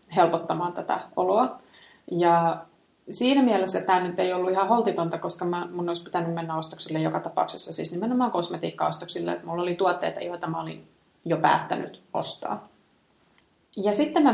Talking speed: 145 wpm